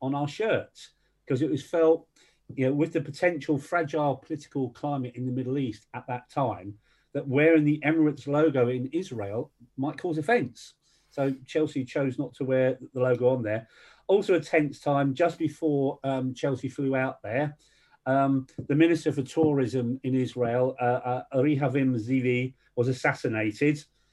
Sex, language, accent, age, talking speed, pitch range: male, English, British, 40-59, 160 wpm, 130-155 Hz